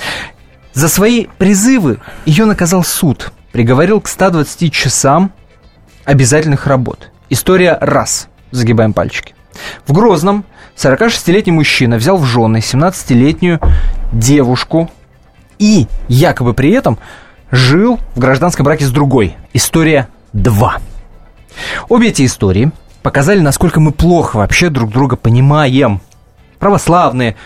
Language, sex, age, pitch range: Russian, male, 20-39, 110-165 Hz